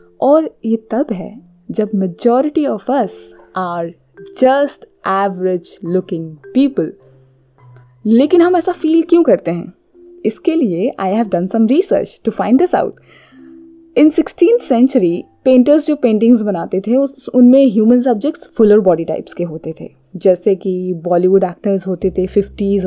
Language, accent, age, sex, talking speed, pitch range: Hindi, native, 20-39, female, 145 wpm, 180-260 Hz